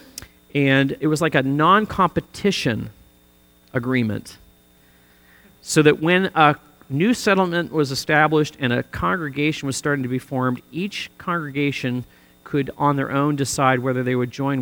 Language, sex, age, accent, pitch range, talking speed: English, male, 40-59, American, 115-145 Hz, 140 wpm